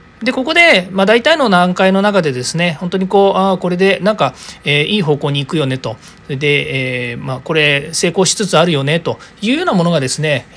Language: Japanese